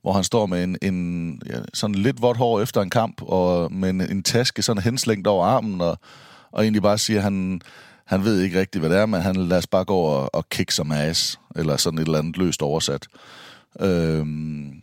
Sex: male